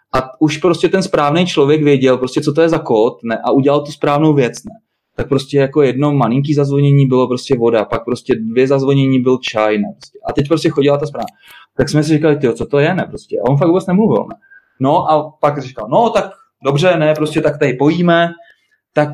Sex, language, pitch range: male, Czech, 125-155 Hz